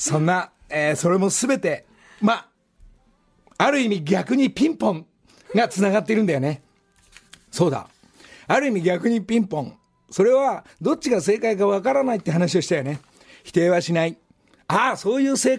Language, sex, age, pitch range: Japanese, male, 50-69, 130-210 Hz